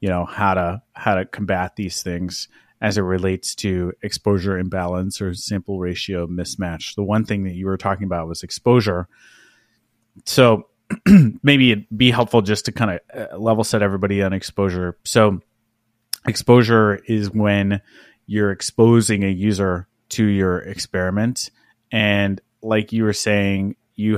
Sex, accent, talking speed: male, American, 150 wpm